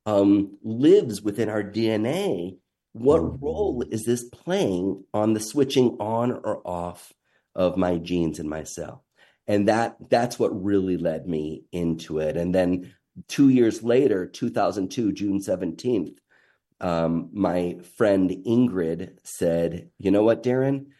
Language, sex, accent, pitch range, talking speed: English, male, American, 90-120 Hz, 135 wpm